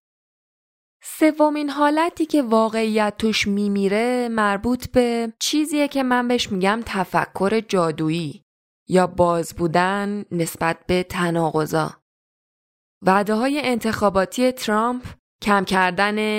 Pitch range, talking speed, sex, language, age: 185-230 Hz, 100 wpm, female, Persian, 20-39